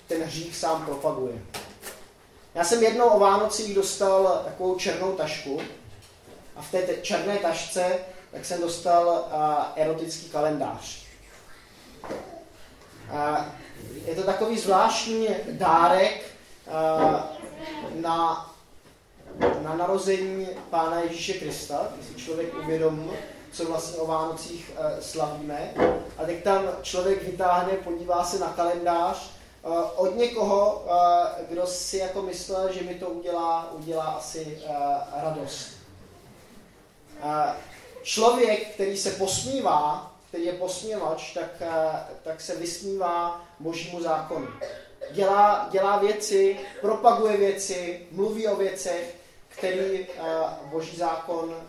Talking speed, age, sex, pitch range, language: 110 wpm, 20-39, male, 160-195 Hz, Czech